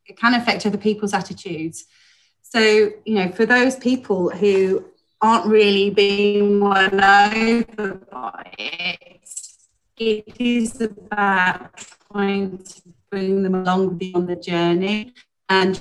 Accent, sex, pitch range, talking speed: British, female, 185-225 Hz, 120 wpm